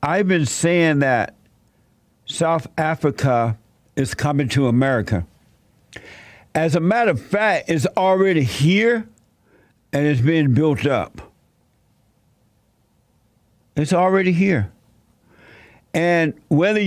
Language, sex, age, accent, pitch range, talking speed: English, male, 60-79, American, 120-160 Hz, 100 wpm